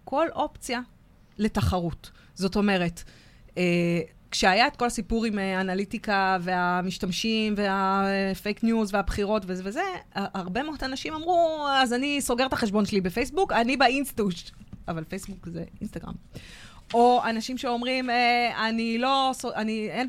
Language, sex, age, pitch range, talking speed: Hebrew, female, 20-39, 175-230 Hz, 135 wpm